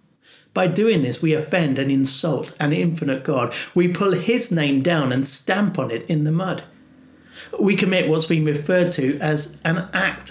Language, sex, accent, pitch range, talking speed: English, male, British, 145-185 Hz, 180 wpm